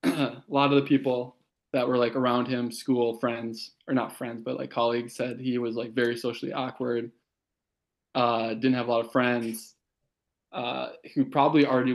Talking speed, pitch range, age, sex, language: 180 wpm, 115-130 Hz, 20-39, male, English